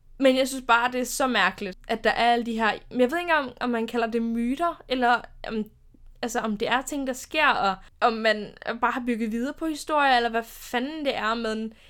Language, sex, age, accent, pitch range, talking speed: Danish, female, 10-29, native, 220-280 Hz, 245 wpm